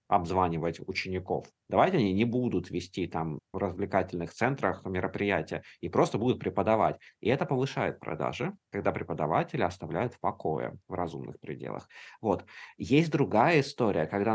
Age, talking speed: 20-39, 140 wpm